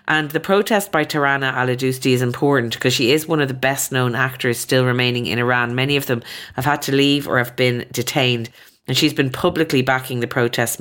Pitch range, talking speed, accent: 120-140 Hz, 215 wpm, Irish